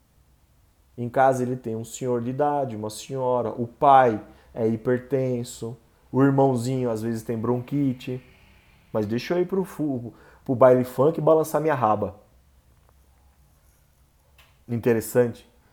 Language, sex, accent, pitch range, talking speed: Portuguese, male, Brazilian, 90-145 Hz, 125 wpm